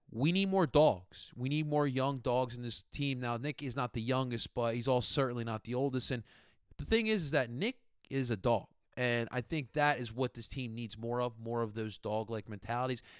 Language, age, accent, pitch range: English, 30-49, American, 115-145 Hz